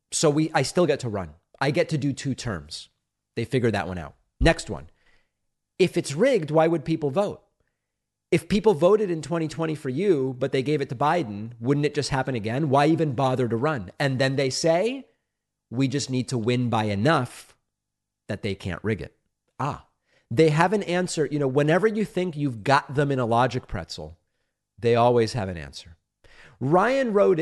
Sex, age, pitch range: male, 40-59, 110-155 Hz